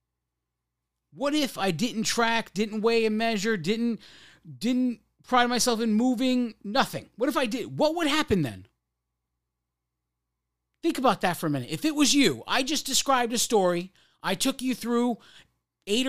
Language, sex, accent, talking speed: English, male, American, 165 wpm